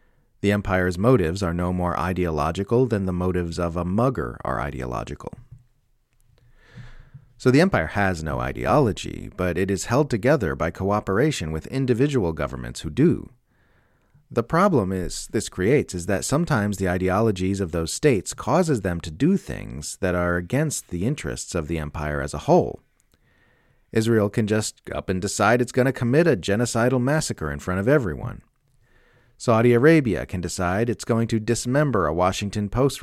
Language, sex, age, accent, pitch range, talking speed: English, male, 40-59, American, 90-120 Hz, 165 wpm